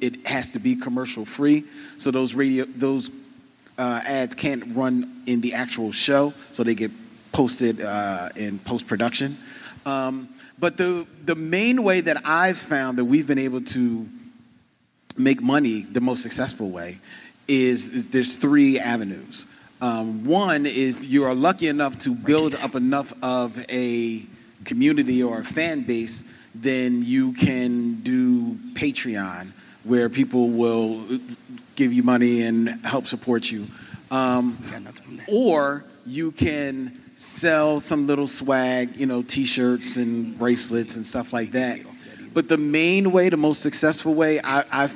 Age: 40-59